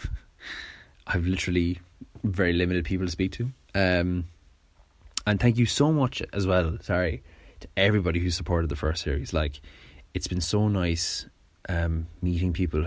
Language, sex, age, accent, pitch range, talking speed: English, male, 20-39, Irish, 80-95 Hz, 155 wpm